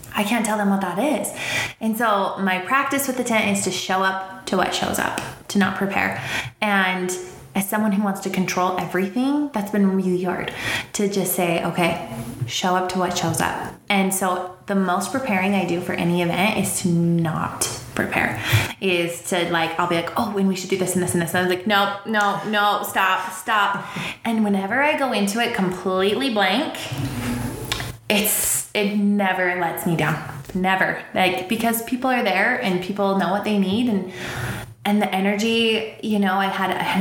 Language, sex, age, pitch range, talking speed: English, female, 20-39, 175-205 Hz, 200 wpm